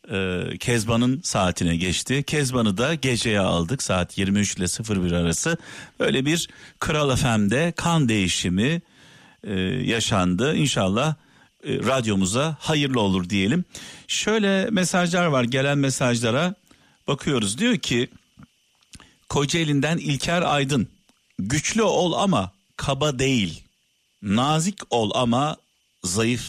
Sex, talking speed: male, 100 wpm